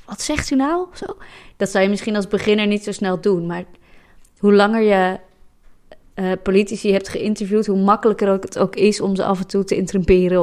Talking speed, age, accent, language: 200 wpm, 20-39, Dutch, English